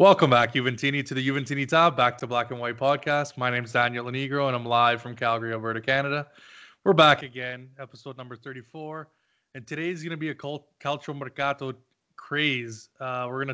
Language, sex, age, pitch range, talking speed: English, male, 20-39, 125-140 Hz, 195 wpm